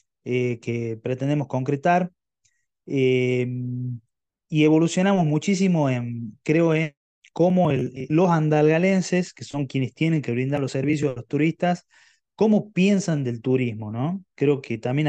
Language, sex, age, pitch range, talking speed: Spanish, male, 20-39, 125-155 Hz, 135 wpm